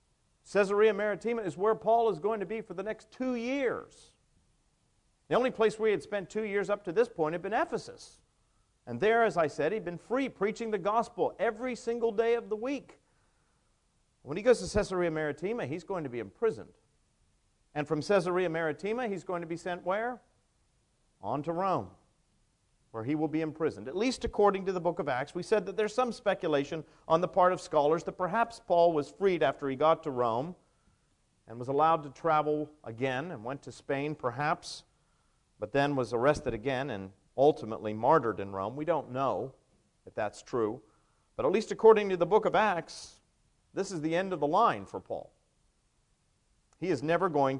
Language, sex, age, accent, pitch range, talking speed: English, male, 50-69, American, 140-215 Hz, 195 wpm